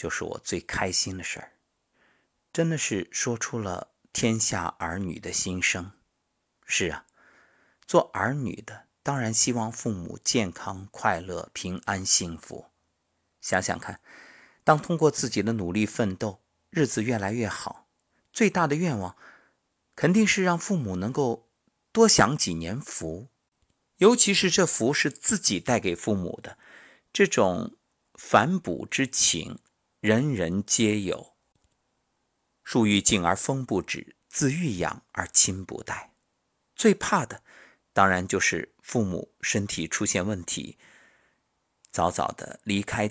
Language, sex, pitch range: Chinese, male, 95-135 Hz